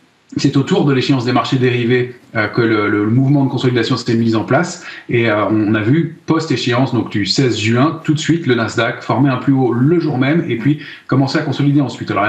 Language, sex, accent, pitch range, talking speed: French, male, French, 125-155 Hz, 230 wpm